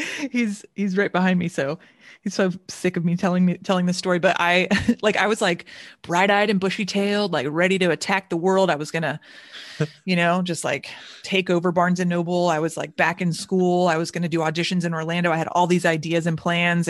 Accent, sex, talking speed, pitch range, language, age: American, female, 240 wpm, 165-200 Hz, English, 30-49